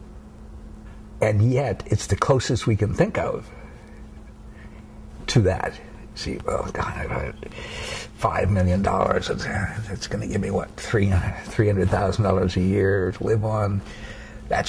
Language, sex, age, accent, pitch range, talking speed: English, male, 60-79, American, 95-110 Hz, 150 wpm